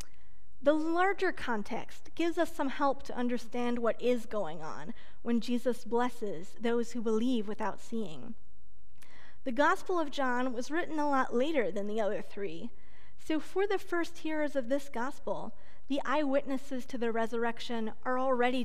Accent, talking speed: American, 160 wpm